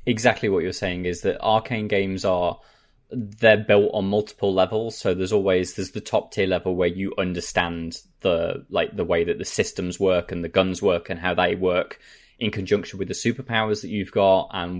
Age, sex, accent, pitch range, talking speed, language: 20-39, male, British, 90-115 Hz, 205 wpm, English